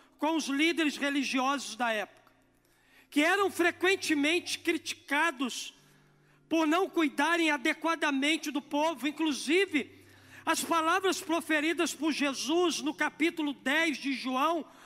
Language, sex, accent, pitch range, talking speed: Portuguese, male, Brazilian, 275-330 Hz, 110 wpm